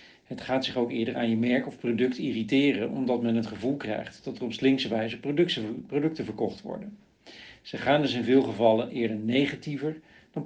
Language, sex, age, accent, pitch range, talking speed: Dutch, male, 50-69, Dutch, 120-150 Hz, 195 wpm